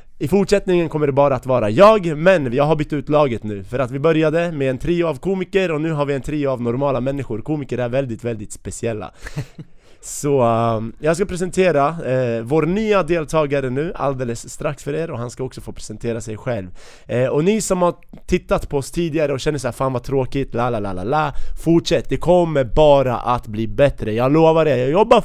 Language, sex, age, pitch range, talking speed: Swedish, male, 30-49, 130-170 Hz, 215 wpm